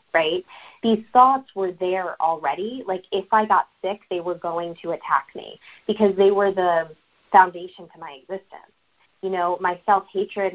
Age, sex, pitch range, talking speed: 20-39, female, 175-210 Hz, 165 wpm